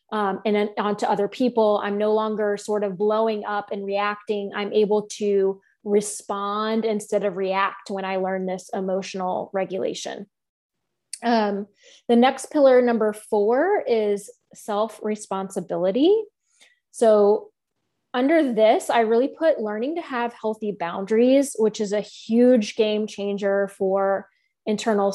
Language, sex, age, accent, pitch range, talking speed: English, female, 20-39, American, 205-235 Hz, 130 wpm